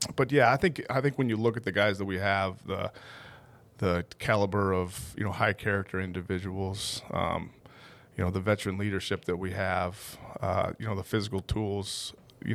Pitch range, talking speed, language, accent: 95-115 Hz, 190 wpm, English, American